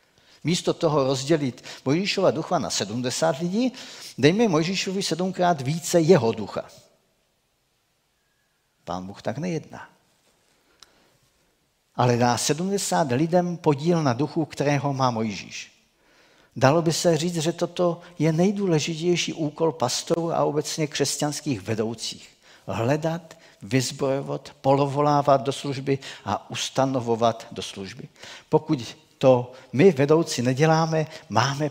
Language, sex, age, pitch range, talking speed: Czech, male, 50-69, 120-160 Hz, 110 wpm